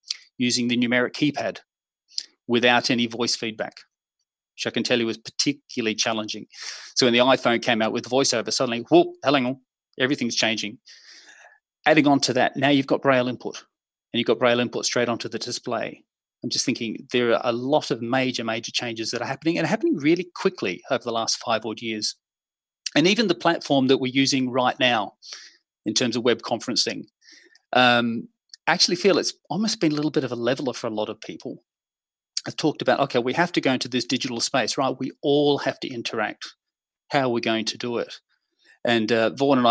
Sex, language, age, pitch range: male, English, 30-49, 115-140 Hz